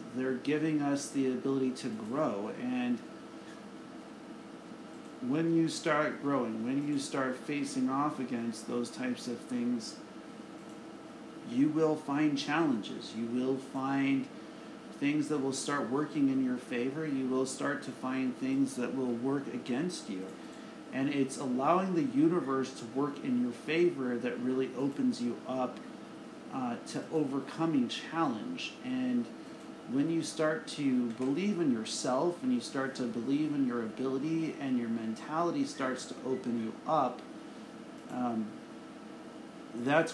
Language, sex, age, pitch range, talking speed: English, male, 40-59, 130-175 Hz, 140 wpm